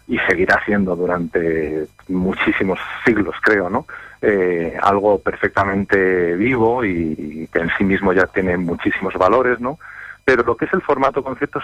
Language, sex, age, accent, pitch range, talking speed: Spanish, male, 30-49, Spanish, 95-125 Hz, 155 wpm